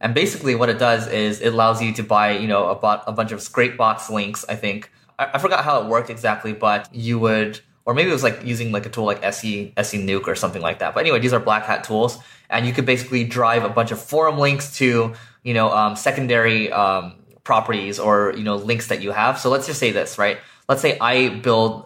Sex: male